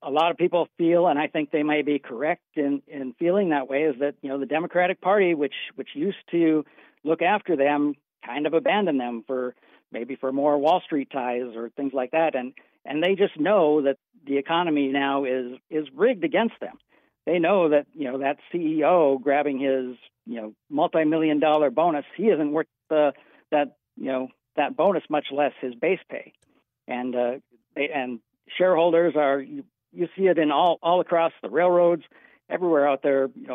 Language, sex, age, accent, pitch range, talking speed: English, male, 60-79, American, 135-170 Hz, 195 wpm